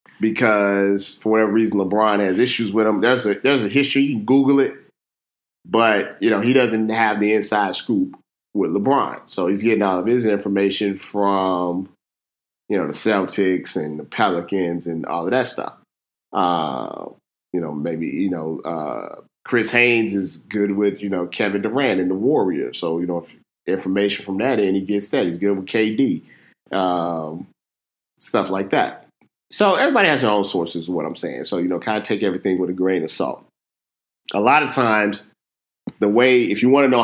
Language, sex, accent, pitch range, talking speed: English, male, American, 90-110 Hz, 195 wpm